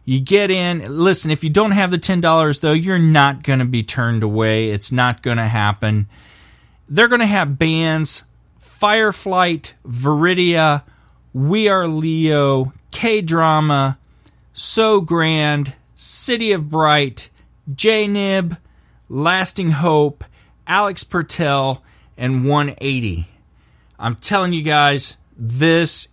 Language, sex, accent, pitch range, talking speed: English, male, American, 130-175 Hz, 115 wpm